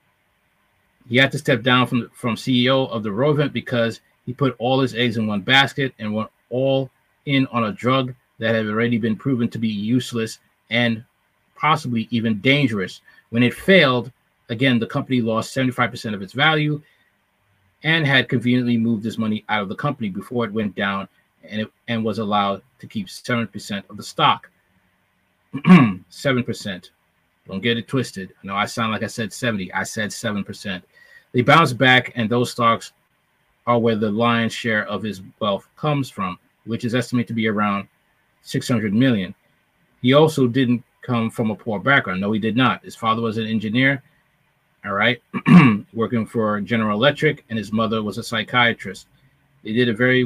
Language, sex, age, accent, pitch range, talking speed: English, male, 30-49, American, 110-135 Hz, 175 wpm